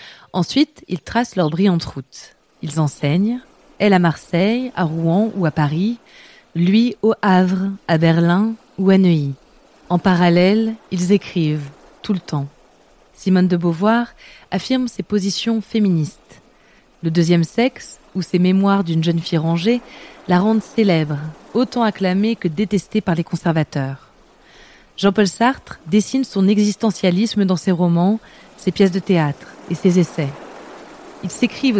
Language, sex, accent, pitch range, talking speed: French, female, French, 170-215 Hz, 140 wpm